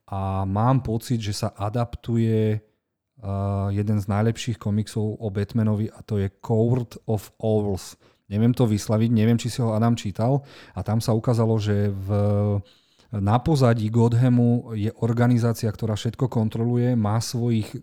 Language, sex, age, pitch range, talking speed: Slovak, male, 40-59, 105-120 Hz, 150 wpm